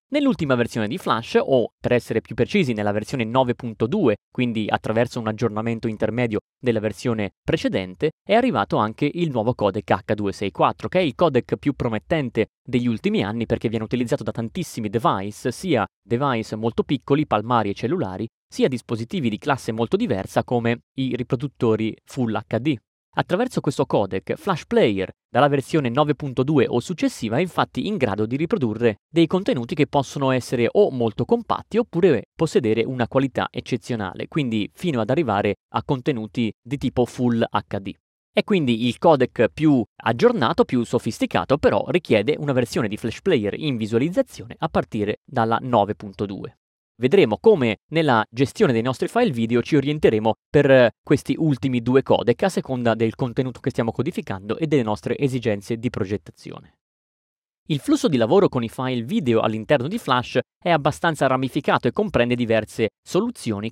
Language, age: Italian, 30-49